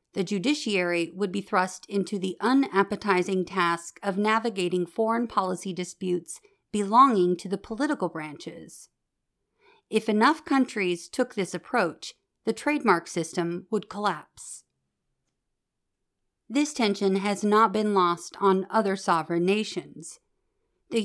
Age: 40-59